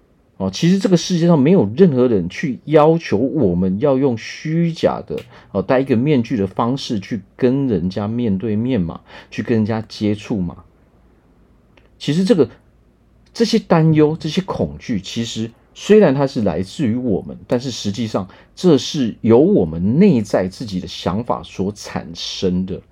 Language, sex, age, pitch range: Chinese, male, 40-59, 95-155 Hz